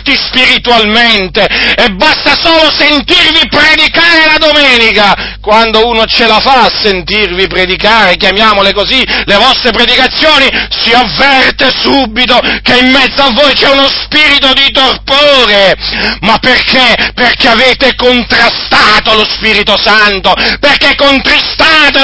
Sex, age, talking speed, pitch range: male, 40-59, 120 wpm, 220-270 Hz